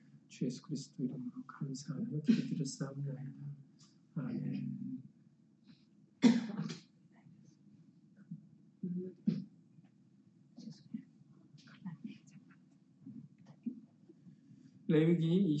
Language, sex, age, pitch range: Korean, male, 50-69, 150-215 Hz